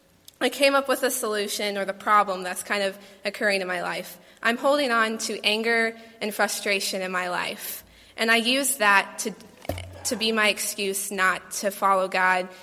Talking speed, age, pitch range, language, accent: 185 wpm, 20-39, 190-225 Hz, English, American